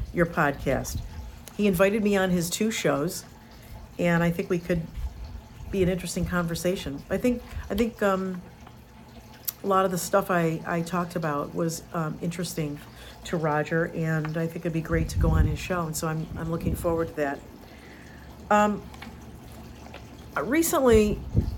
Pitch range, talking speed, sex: 150-215 Hz, 160 wpm, female